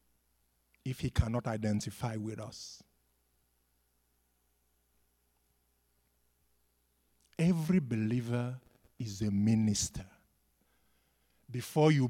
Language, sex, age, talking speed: English, male, 50-69, 65 wpm